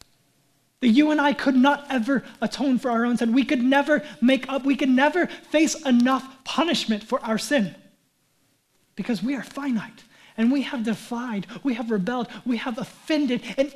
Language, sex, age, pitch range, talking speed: English, male, 20-39, 225-280 Hz, 180 wpm